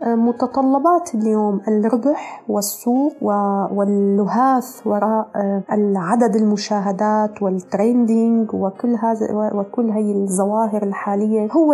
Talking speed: 75 wpm